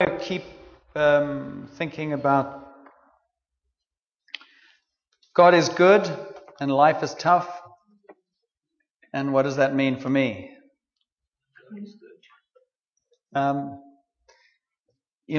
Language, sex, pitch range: English, male, 140-170 Hz